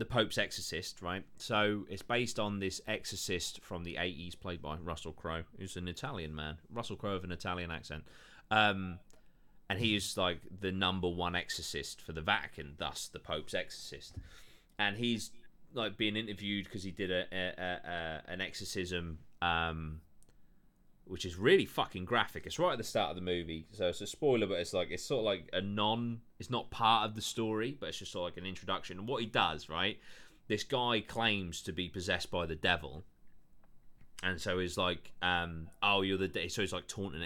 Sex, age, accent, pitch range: male, 20-39, British, 85-100 Hz